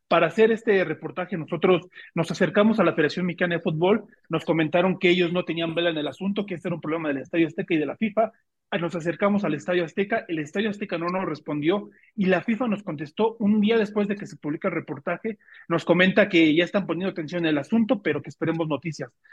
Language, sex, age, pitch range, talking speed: Spanish, male, 40-59, 165-195 Hz, 230 wpm